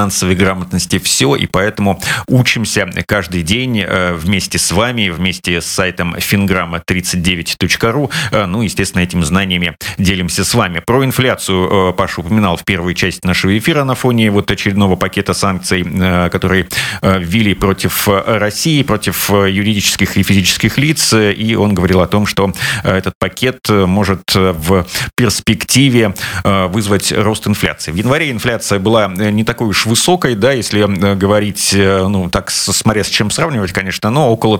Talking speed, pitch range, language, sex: 140 wpm, 95-115 Hz, Russian, male